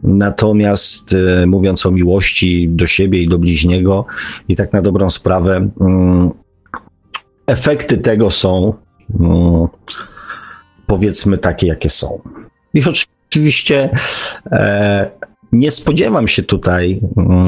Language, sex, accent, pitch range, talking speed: Polish, male, native, 85-100 Hz, 95 wpm